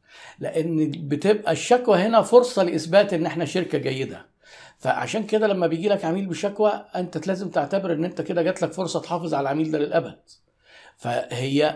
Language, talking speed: Arabic, 165 wpm